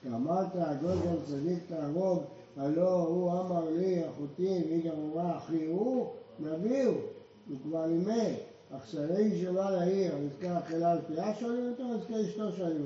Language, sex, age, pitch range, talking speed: Hebrew, male, 60-79, 160-210 Hz, 155 wpm